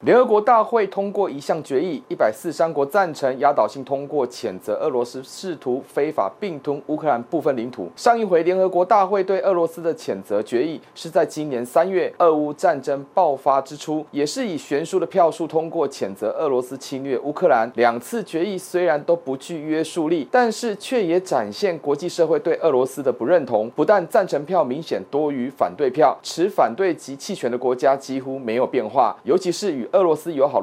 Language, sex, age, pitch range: Chinese, male, 30-49, 145-200 Hz